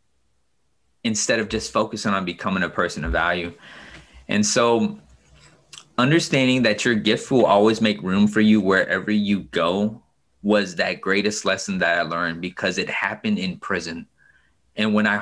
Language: English